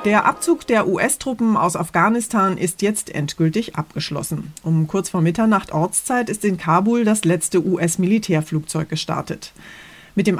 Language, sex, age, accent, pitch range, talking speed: German, female, 30-49, German, 175-215 Hz, 140 wpm